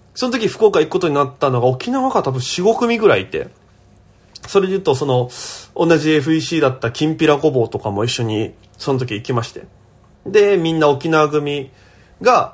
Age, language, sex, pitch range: 20-39, Japanese, male, 120-170 Hz